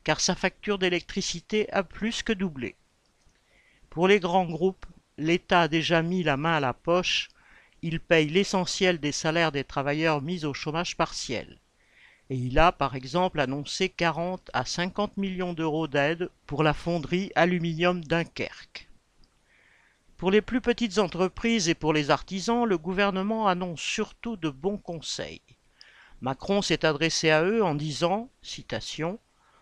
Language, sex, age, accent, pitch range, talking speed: French, male, 50-69, French, 160-210 Hz, 150 wpm